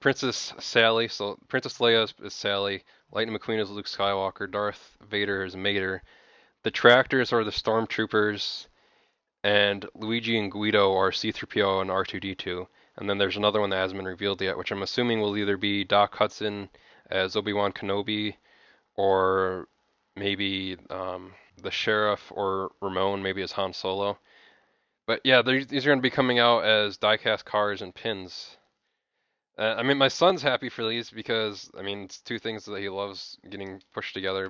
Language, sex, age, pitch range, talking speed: English, male, 20-39, 95-115 Hz, 165 wpm